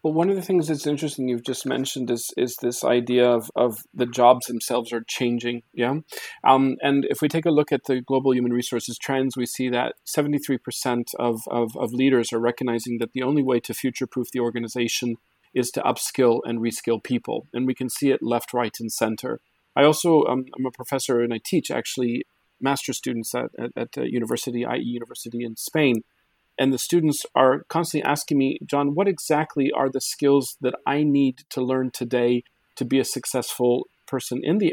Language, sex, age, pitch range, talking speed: Polish, male, 40-59, 120-145 Hz, 200 wpm